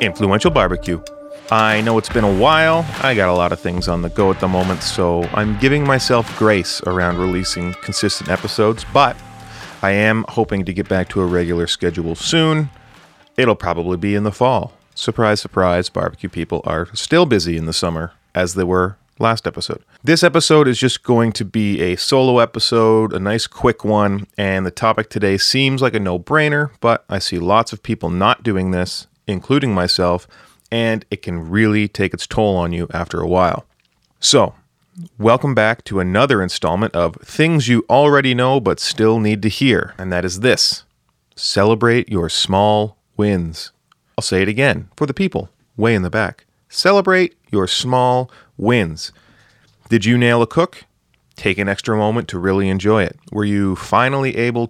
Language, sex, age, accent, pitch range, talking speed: English, male, 30-49, American, 95-120 Hz, 180 wpm